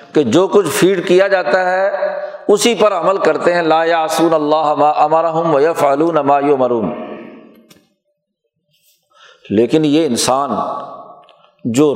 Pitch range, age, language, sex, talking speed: 150-205 Hz, 50-69, Urdu, male, 120 wpm